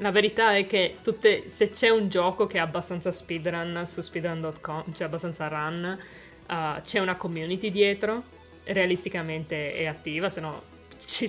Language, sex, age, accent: Italian, female, 20-39, native